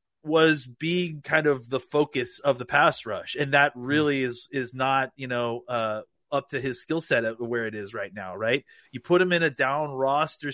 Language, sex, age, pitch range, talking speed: English, male, 30-49, 120-150 Hz, 210 wpm